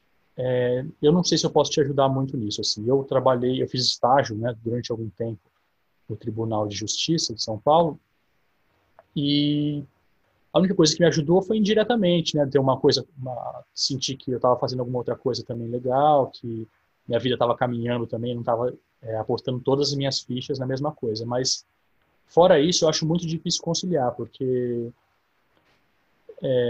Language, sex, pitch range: Portuguese, male, 120-150 Hz